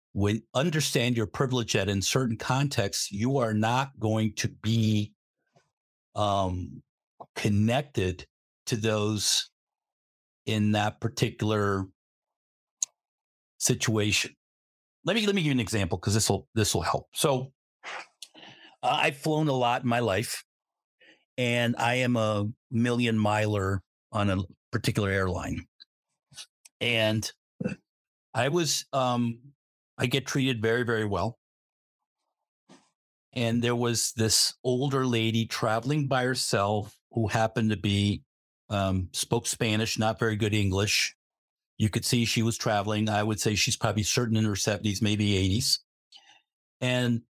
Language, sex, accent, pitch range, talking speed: English, male, American, 105-125 Hz, 130 wpm